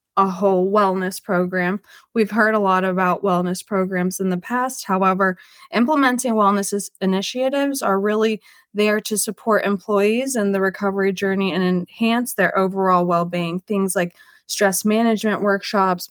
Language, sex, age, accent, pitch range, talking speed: English, female, 20-39, American, 190-230 Hz, 140 wpm